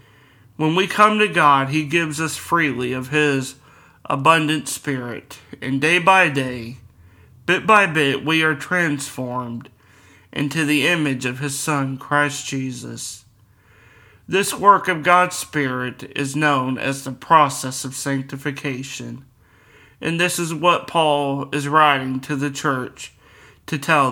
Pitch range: 130-155 Hz